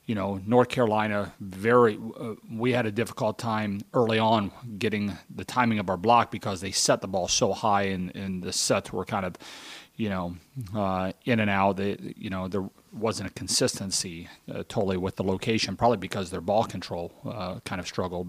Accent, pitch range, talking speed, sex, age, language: American, 95-120 Hz, 195 wpm, male, 30-49, English